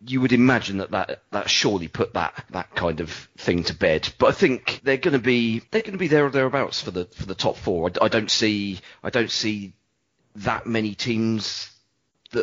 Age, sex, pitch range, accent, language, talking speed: 40-59, male, 95-125 Hz, British, English, 220 wpm